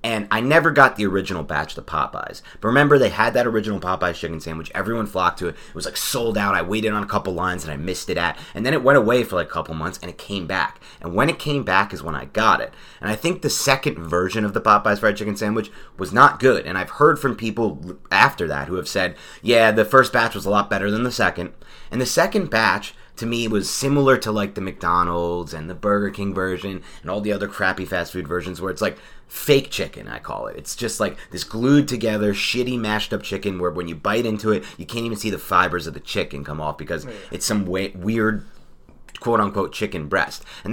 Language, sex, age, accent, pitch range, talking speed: English, male, 30-49, American, 90-115 Hz, 250 wpm